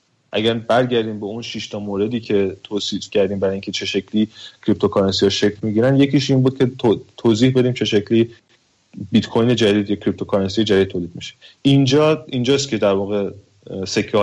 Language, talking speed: Persian, 165 wpm